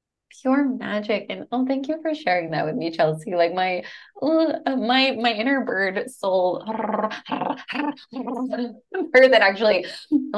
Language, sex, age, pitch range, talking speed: English, female, 20-39, 155-225 Hz, 135 wpm